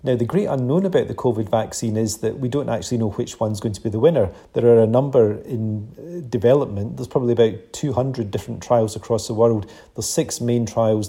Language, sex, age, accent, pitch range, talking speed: English, male, 40-59, British, 110-125 Hz, 215 wpm